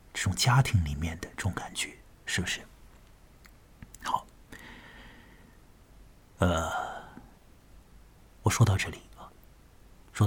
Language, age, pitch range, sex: Chinese, 50-69, 95-130 Hz, male